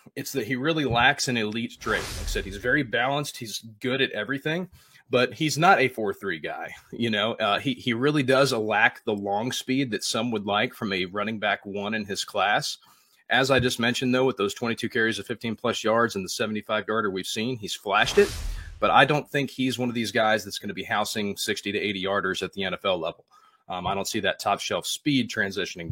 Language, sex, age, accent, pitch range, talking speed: English, male, 30-49, American, 105-135 Hz, 260 wpm